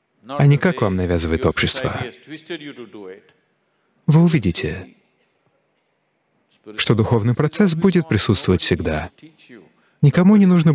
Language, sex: Russian, male